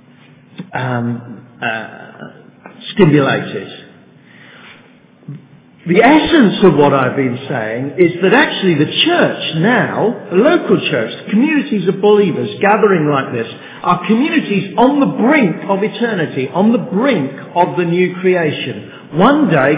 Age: 50-69